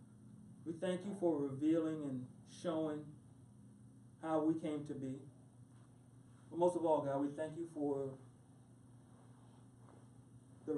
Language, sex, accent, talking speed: English, male, American, 120 wpm